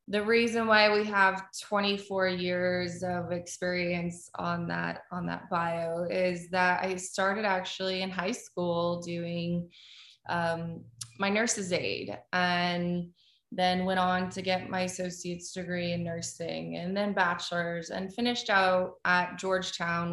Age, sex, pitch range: 20-39, female, 170-195 Hz